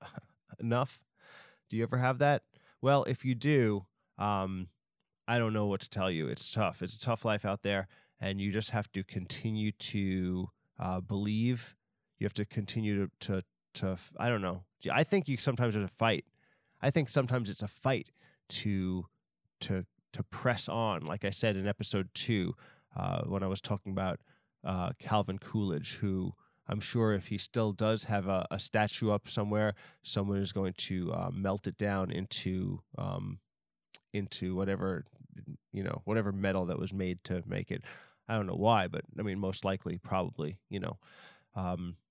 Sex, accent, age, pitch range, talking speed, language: male, American, 20-39, 95-115 Hz, 180 wpm, English